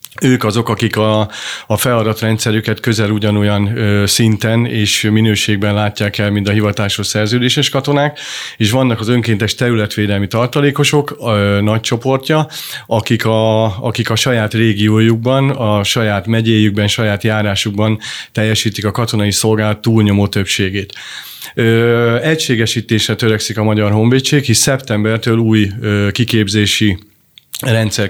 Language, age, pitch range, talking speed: Hungarian, 30-49, 105-120 Hz, 120 wpm